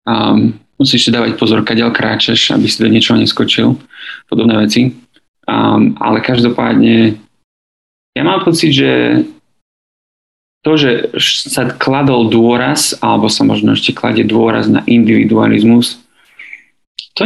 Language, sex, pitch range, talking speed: Slovak, male, 110-140 Hz, 120 wpm